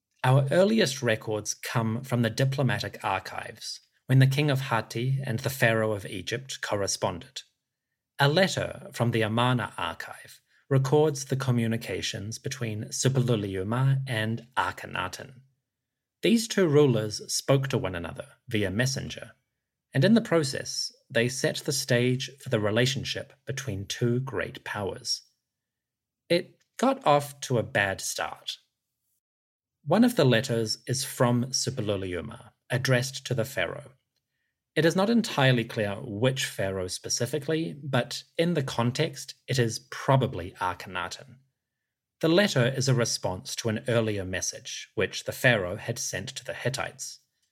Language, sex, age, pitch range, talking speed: English, male, 30-49, 115-140 Hz, 135 wpm